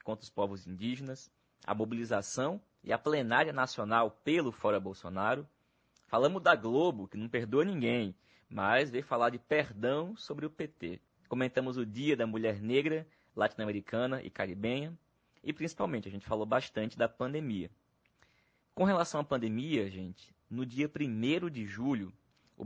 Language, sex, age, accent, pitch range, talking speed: Portuguese, male, 20-39, Brazilian, 100-130 Hz, 150 wpm